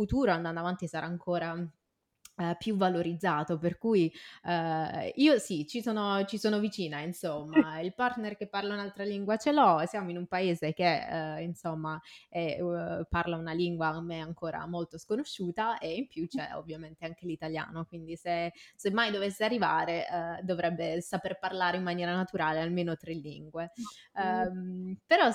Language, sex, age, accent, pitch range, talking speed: Italian, female, 20-39, native, 160-185 Hz, 160 wpm